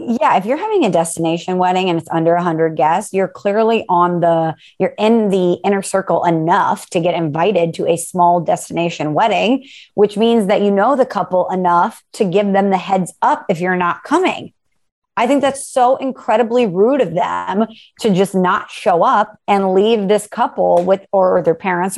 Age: 20-39